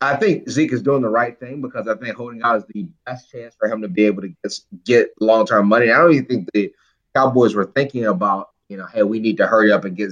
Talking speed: 275 wpm